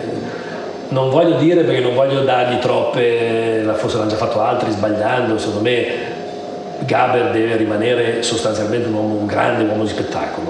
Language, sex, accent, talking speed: Italian, male, native, 155 wpm